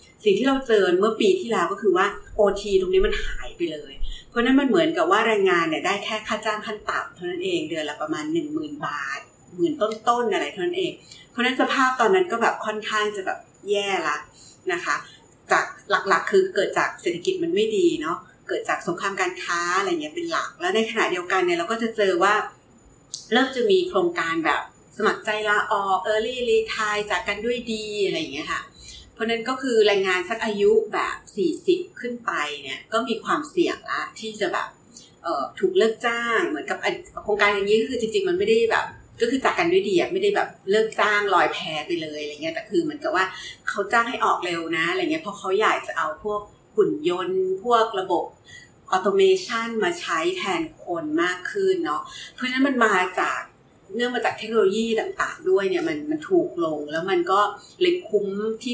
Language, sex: Thai, female